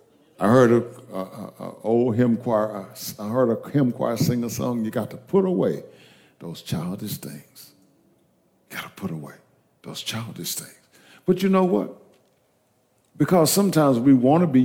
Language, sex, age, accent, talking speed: English, male, 50-69, American, 175 wpm